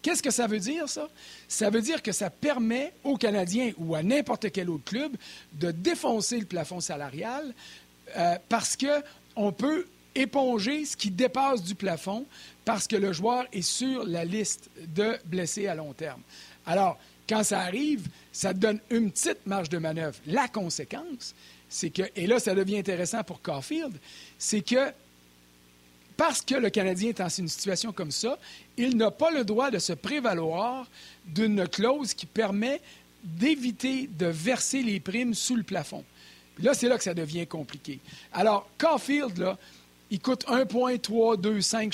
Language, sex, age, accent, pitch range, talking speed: French, male, 50-69, Canadian, 175-245 Hz, 165 wpm